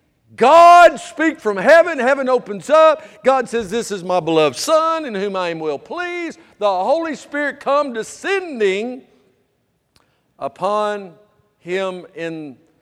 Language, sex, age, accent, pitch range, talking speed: English, male, 50-69, American, 120-180 Hz, 130 wpm